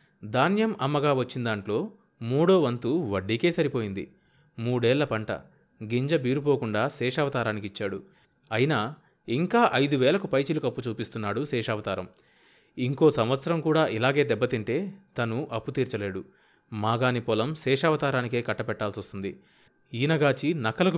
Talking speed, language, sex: 95 wpm, Telugu, male